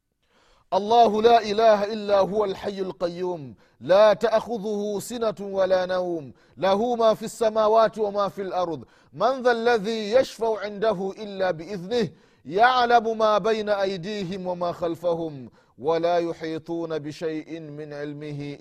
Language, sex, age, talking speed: Swahili, male, 30-49, 120 wpm